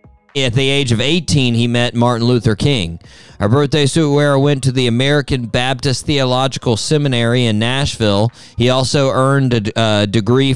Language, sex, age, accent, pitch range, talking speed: English, male, 40-59, American, 110-140 Hz, 165 wpm